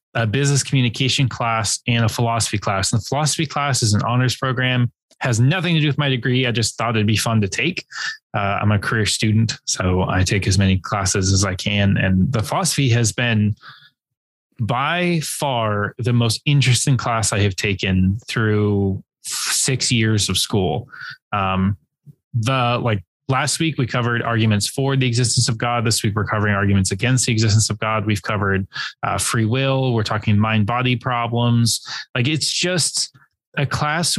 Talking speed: 180 wpm